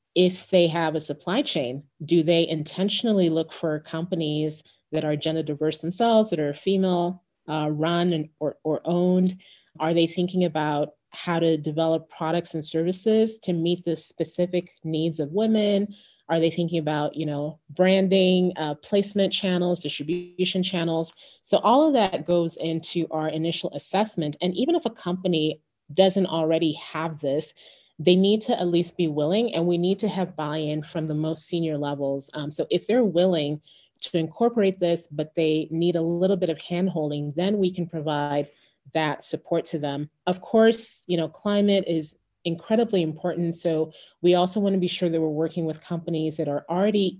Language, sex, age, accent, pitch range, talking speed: English, female, 30-49, American, 155-185 Hz, 175 wpm